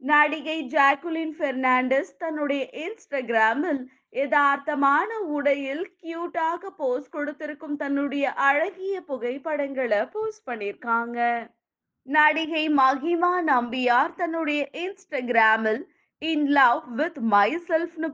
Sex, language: female, Tamil